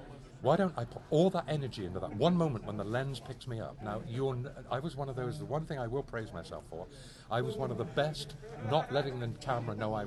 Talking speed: 255 wpm